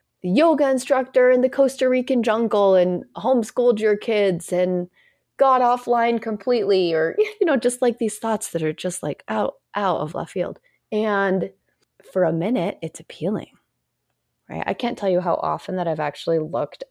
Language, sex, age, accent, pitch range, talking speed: English, female, 20-39, American, 170-255 Hz, 175 wpm